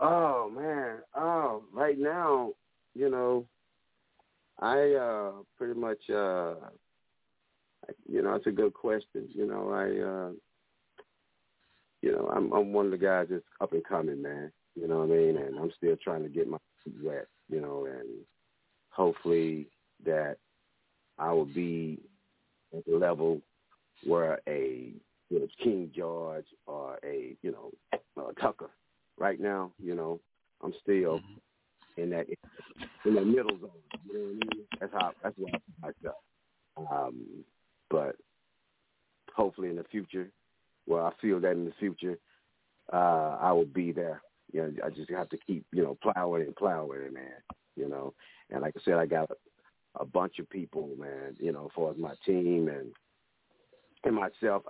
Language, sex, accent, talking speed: English, male, American, 165 wpm